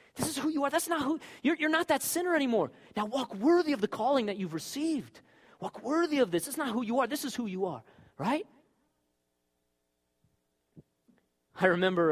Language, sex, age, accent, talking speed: English, male, 30-49, American, 205 wpm